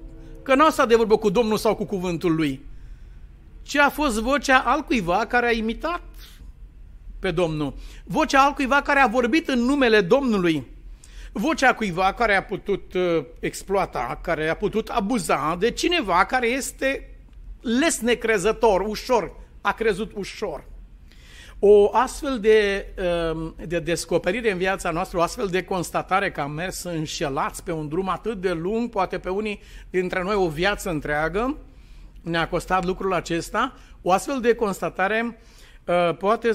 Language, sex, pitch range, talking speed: Romanian, male, 175-245 Hz, 145 wpm